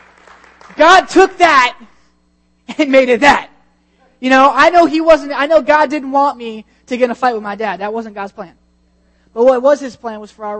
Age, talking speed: 20-39, 220 wpm